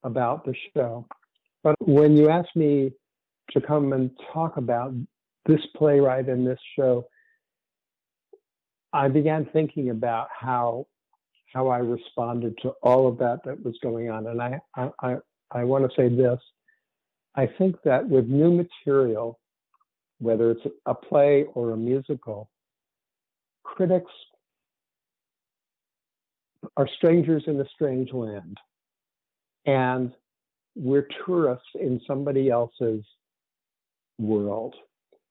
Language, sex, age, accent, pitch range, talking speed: English, male, 60-79, American, 125-150 Hz, 120 wpm